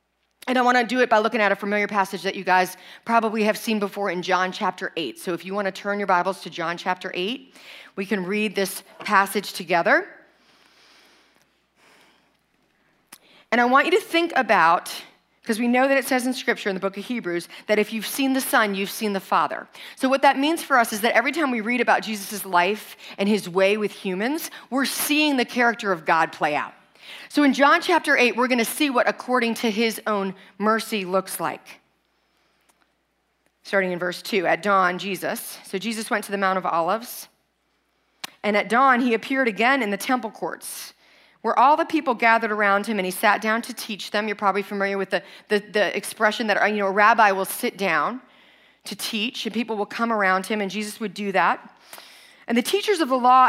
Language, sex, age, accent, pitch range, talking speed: English, female, 40-59, American, 195-250 Hz, 210 wpm